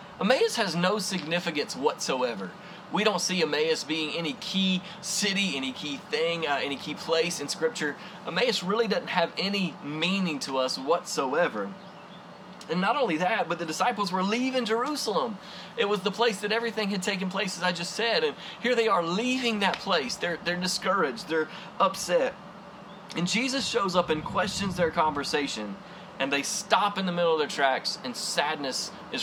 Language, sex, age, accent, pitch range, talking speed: English, male, 20-39, American, 175-230 Hz, 175 wpm